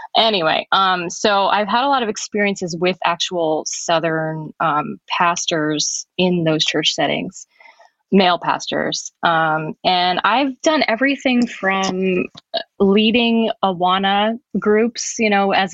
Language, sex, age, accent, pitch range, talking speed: English, female, 20-39, American, 165-195 Hz, 120 wpm